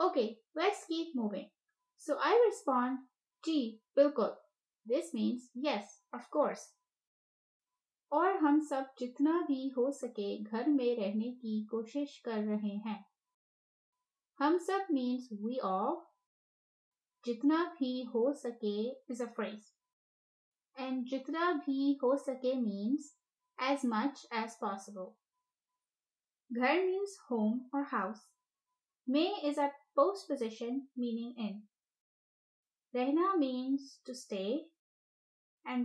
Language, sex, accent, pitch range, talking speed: English, female, Indian, 230-310 Hz, 115 wpm